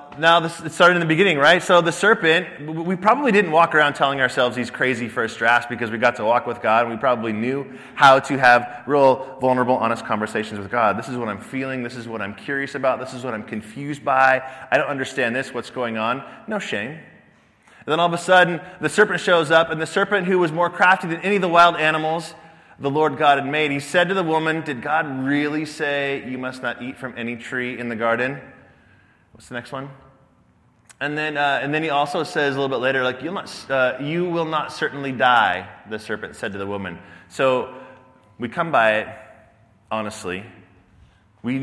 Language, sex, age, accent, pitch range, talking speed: English, male, 20-39, American, 110-150 Hz, 220 wpm